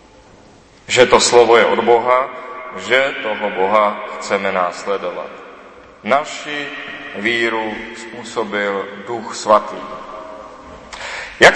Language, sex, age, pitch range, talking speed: Czech, male, 30-49, 105-145 Hz, 90 wpm